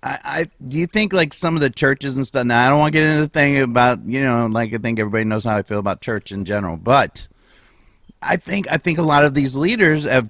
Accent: American